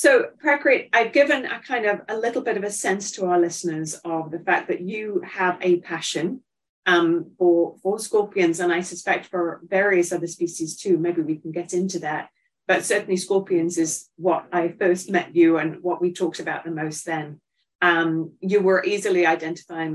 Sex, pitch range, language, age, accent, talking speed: female, 165-200 Hz, English, 30-49, British, 195 wpm